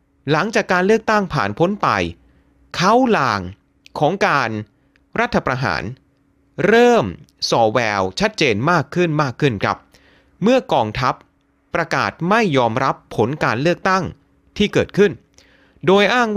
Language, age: Thai, 30-49